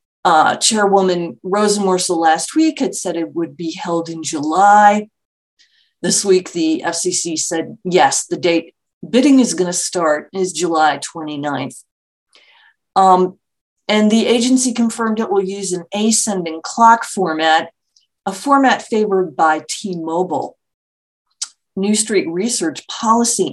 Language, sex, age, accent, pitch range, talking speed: English, female, 40-59, American, 170-215 Hz, 130 wpm